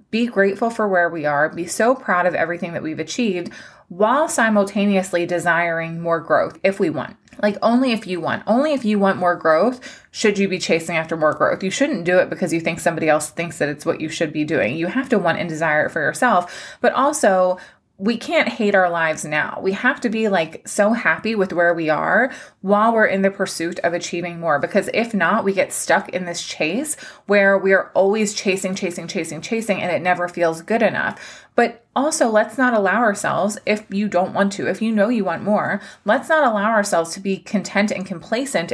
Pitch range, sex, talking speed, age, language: 175-225 Hz, female, 220 wpm, 20-39, English